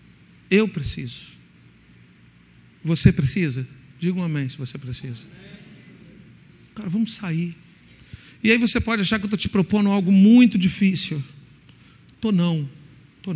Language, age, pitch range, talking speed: Portuguese, 50-69, 155-230 Hz, 130 wpm